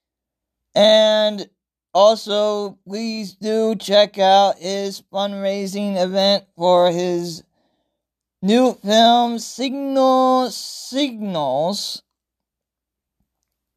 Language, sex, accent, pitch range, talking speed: English, male, American, 175-240 Hz, 65 wpm